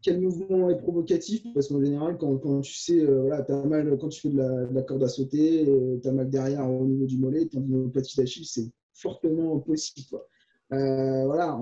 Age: 20-39